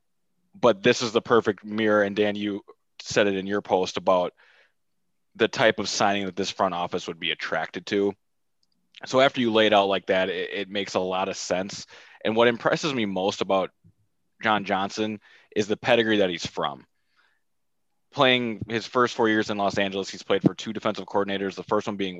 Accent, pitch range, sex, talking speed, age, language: American, 95-115 Hz, male, 200 wpm, 20-39, English